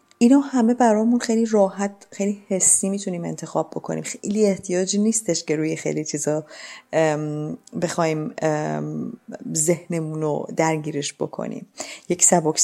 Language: Persian